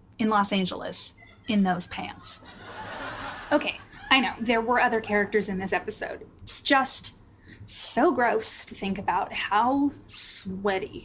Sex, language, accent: female, English, American